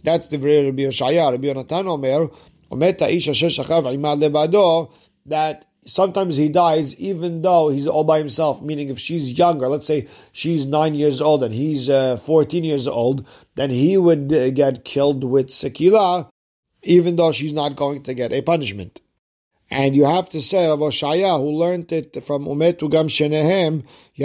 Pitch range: 130-160 Hz